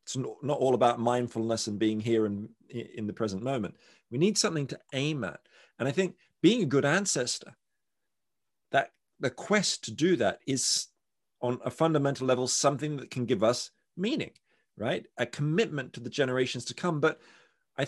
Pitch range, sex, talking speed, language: 120-145 Hz, male, 180 wpm, English